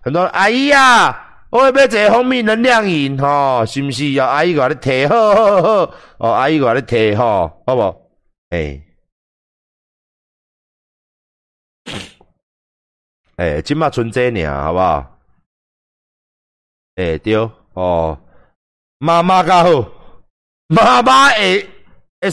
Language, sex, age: Chinese, male, 50-69